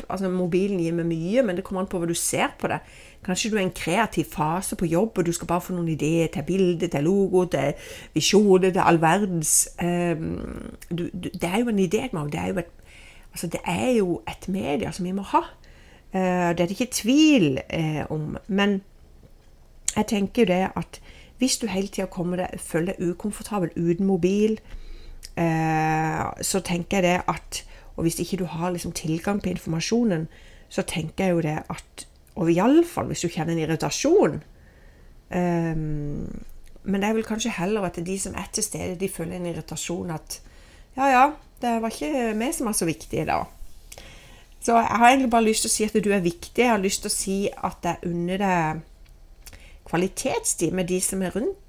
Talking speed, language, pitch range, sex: 200 wpm, English, 170-205 Hz, female